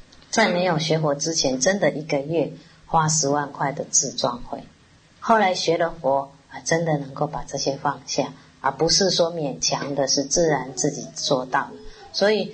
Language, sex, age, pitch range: Chinese, female, 30-49, 140-165 Hz